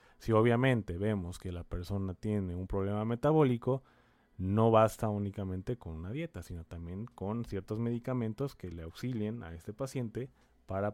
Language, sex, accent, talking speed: Spanish, male, Mexican, 155 wpm